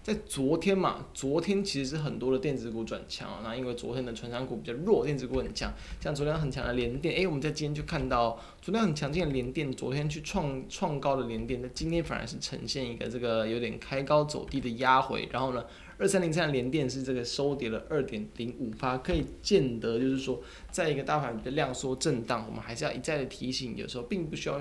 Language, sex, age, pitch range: Chinese, male, 20-39, 120-150 Hz